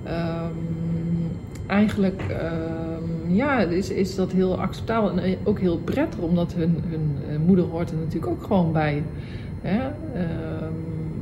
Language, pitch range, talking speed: Dutch, 165-190 Hz, 140 wpm